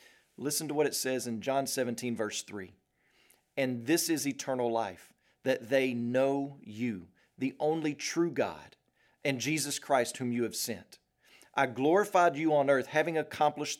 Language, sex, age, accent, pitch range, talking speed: English, male, 40-59, American, 125-175 Hz, 160 wpm